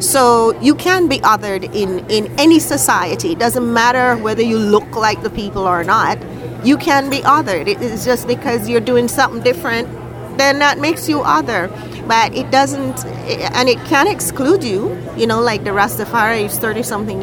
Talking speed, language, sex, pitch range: 175 wpm, English, female, 205-265 Hz